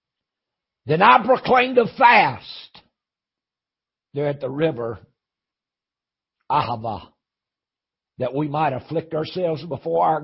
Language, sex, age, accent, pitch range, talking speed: English, male, 60-79, American, 115-155 Hz, 100 wpm